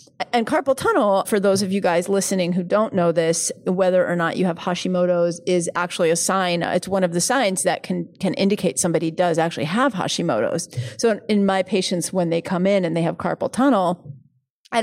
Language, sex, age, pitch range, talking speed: English, female, 30-49, 175-210 Hz, 205 wpm